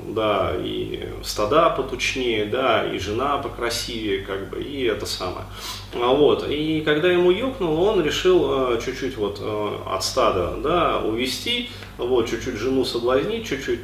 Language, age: Russian, 30-49